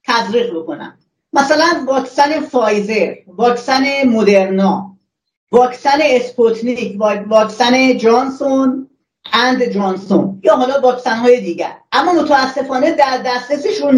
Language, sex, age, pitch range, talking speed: Persian, female, 40-59, 225-280 Hz, 85 wpm